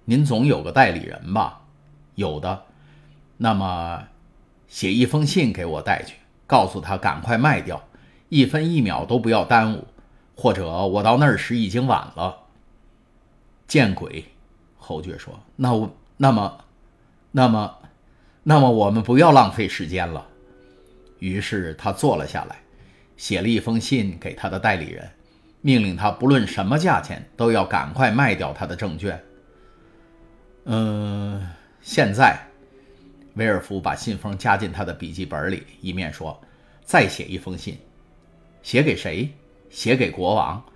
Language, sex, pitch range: Chinese, male, 95-125 Hz